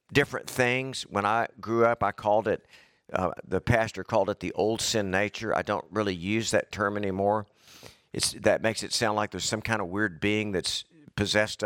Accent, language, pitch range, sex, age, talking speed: American, English, 105-125 Hz, male, 50-69, 200 wpm